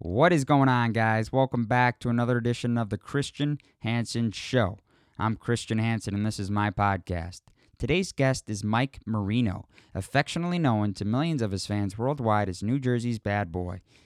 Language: English